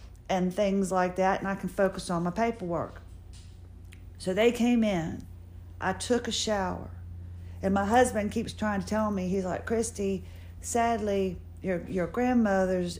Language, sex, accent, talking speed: English, female, American, 155 wpm